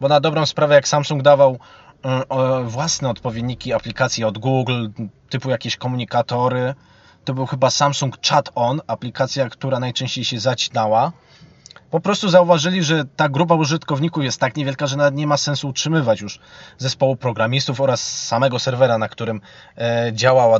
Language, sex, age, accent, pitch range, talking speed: Polish, male, 20-39, native, 115-150 Hz, 150 wpm